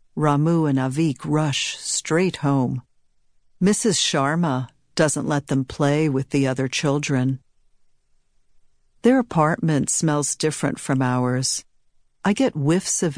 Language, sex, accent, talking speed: English, female, American, 120 wpm